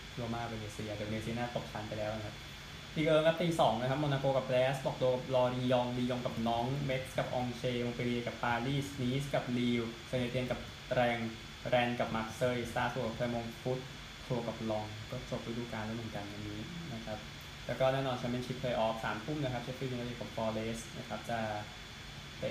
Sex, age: male, 20-39